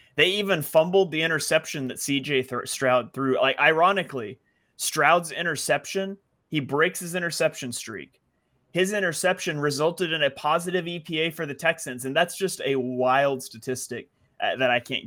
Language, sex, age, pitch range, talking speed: English, male, 30-49, 125-155 Hz, 150 wpm